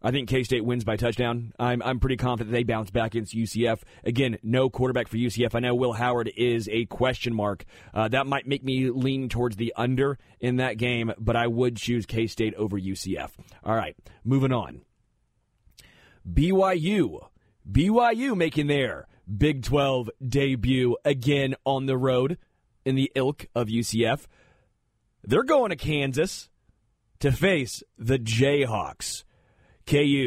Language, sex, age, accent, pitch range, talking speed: English, male, 30-49, American, 115-140 Hz, 150 wpm